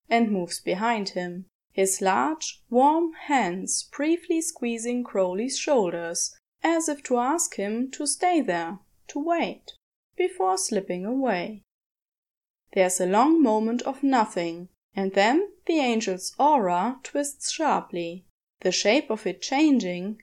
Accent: German